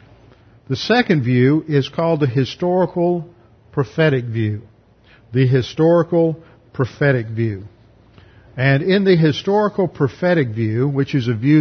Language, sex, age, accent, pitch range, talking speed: English, male, 50-69, American, 120-150 Hz, 120 wpm